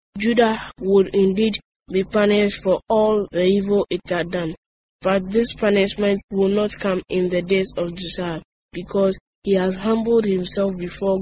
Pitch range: 180-205 Hz